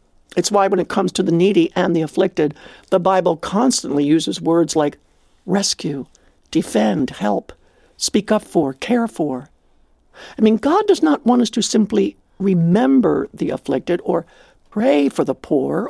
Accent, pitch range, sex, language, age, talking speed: American, 160-250 Hz, male, English, 60-79, 160 wpm